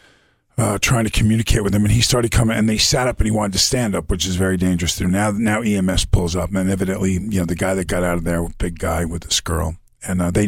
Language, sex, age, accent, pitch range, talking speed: English, male, 50-69, American, 90-115 Hz, 280 wpm